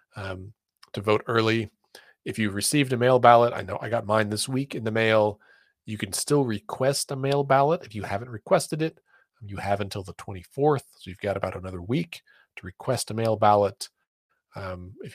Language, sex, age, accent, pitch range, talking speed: English, male, 40-59, American, 105-130 Hz, 200 wpm